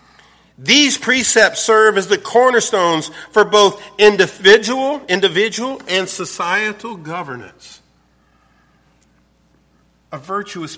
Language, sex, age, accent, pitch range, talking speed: English, male, 50-69, American, 100-170 Hz, 85 wpm